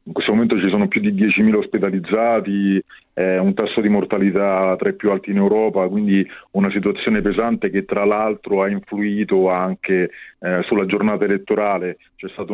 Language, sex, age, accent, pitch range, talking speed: Italian, male, 40-59, native, 95-110 Hz, 175 wpm